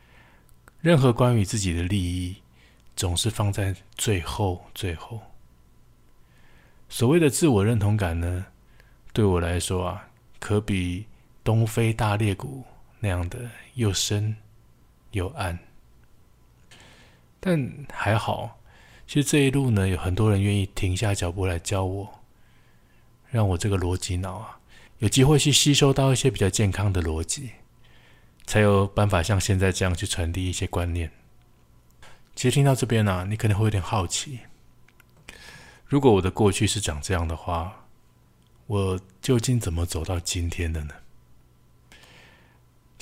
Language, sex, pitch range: Chinese, male, 90-115 Hz